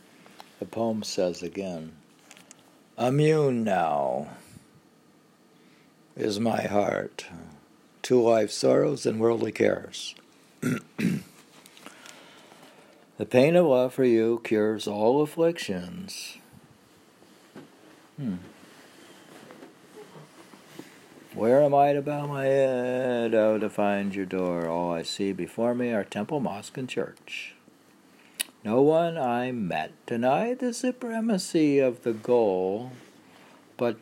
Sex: male